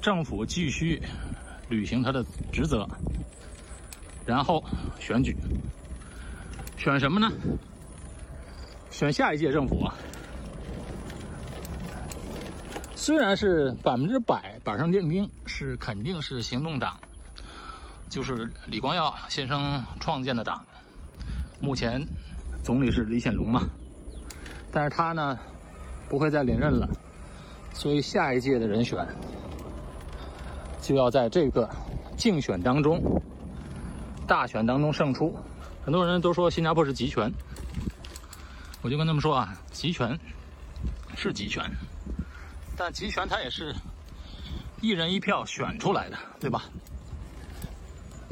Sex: male